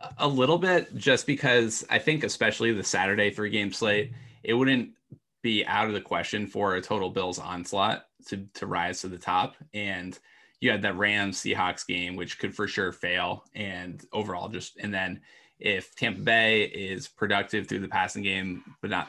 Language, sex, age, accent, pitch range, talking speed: English, male, 20-39, American, 90-105 Hz, 185 wpm